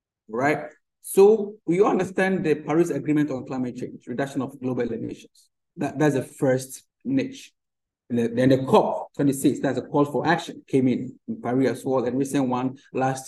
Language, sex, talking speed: English, male, 180 wpm